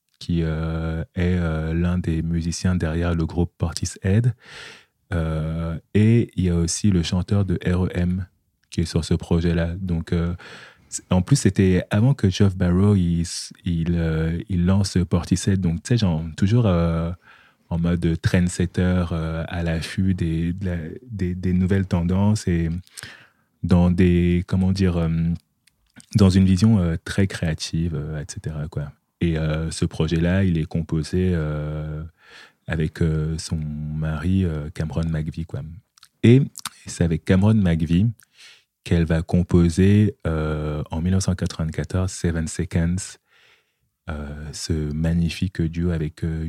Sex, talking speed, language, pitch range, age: male, 140 wpm, French, 80-95 Hz, 30-49